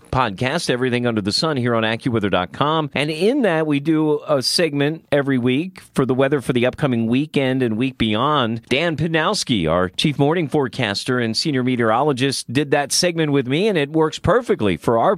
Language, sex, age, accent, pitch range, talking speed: English, male, 40-59, American, 125-160 Hz, 185 wpm